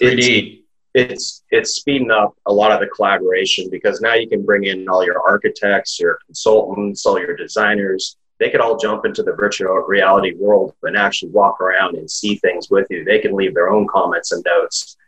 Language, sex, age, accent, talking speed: English, male, 30-49, American, 200 wpm